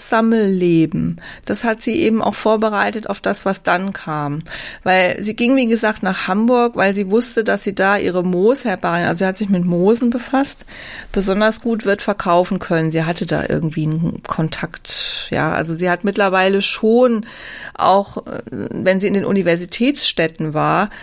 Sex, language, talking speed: female, German, 165 wpm